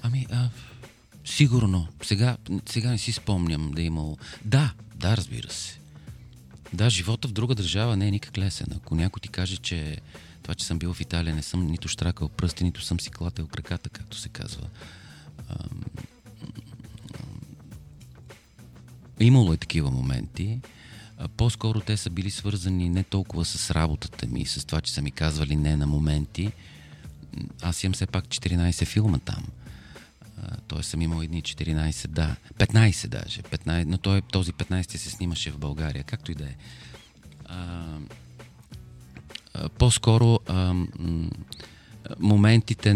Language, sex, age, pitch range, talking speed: Bulgarian, male, 40-59, 80-105 Hz, 140 wpm